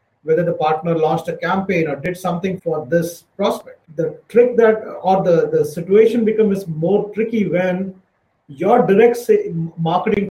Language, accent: English, Indian